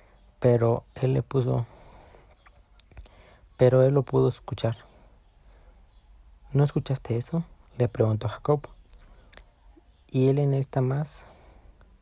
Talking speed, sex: 105 wpm, male